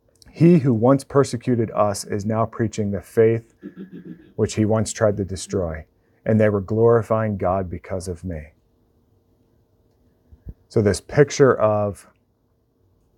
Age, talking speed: 40-59, 125 wpm